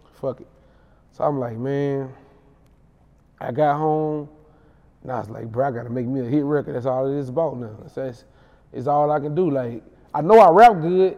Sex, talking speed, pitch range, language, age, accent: male, 215 wpm, 145-200 Hz, English, 20-39, American